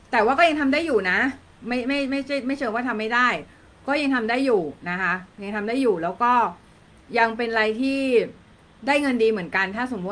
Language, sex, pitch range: Thai, female, 195-265 Hz